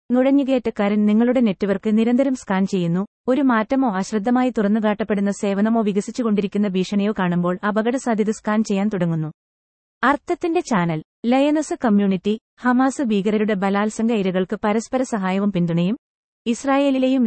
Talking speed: 110 wpm